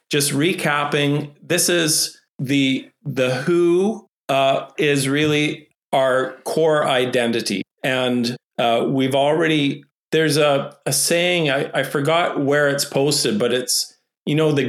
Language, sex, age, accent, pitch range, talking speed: English, male, 40-59, American, 130-155 Hz, 130 wpm